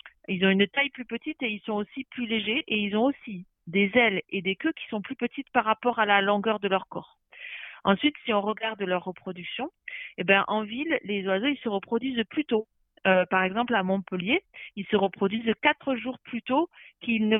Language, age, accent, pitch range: French, 40-59, French, 195-240 Hz